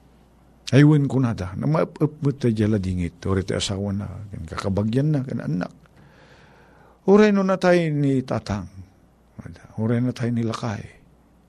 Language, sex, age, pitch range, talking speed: Filipino, male, 50-69, 100-140 Hz, 130 wpm